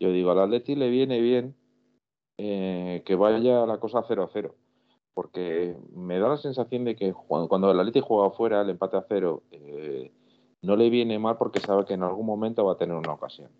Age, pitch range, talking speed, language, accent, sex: 40-59, 90-115 Hz, 200 wpm, Spanish, Spanish, male